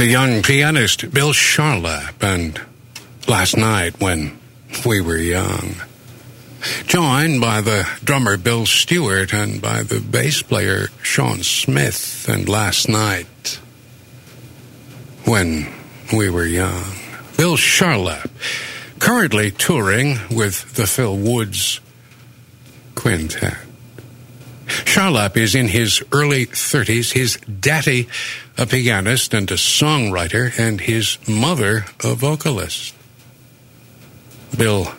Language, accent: English, American